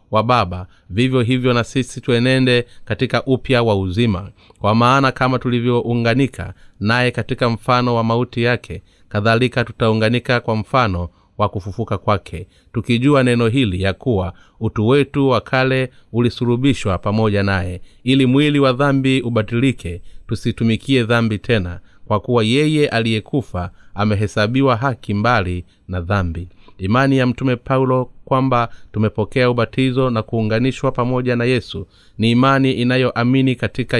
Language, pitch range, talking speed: Swahili, 105-125 Hz, 135 wpm